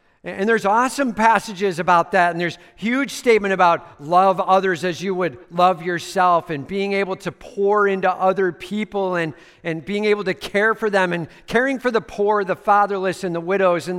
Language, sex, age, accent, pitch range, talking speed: English, male, 50-69, American, 130-195 Hz, 195 wpm